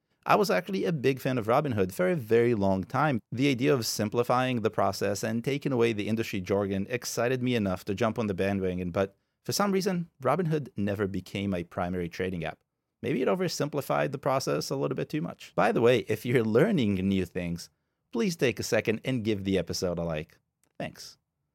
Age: 30-49